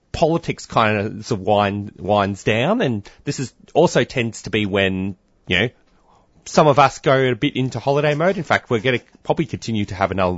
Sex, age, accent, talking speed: male, 30-49, Australian, 195 wpm